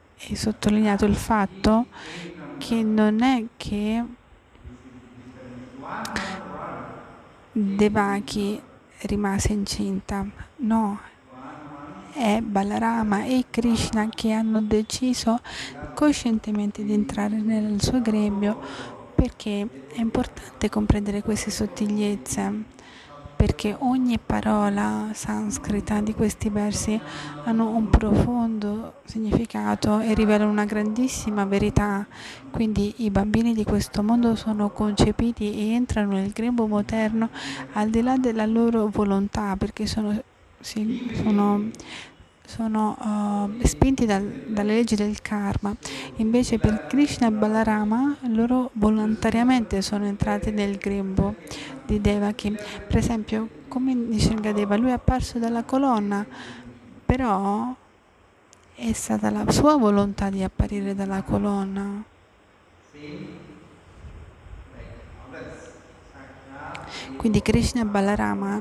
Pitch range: 200-225 Hz